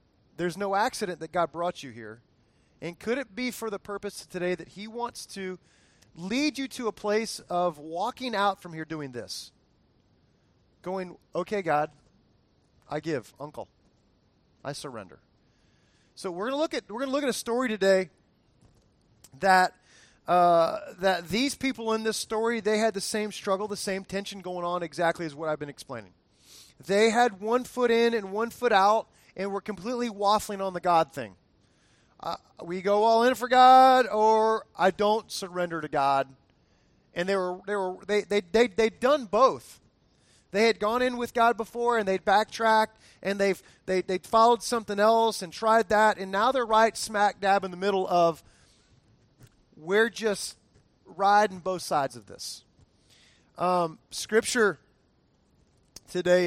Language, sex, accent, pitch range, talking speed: English, male, American, 175-225 Hz, 165 wpm